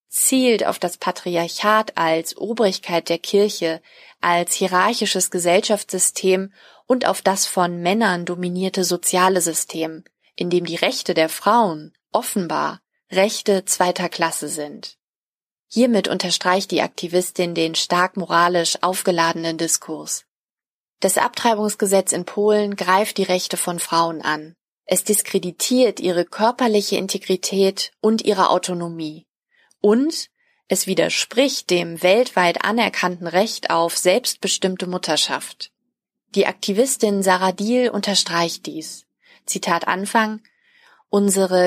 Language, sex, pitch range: German, female, 175-210 Hz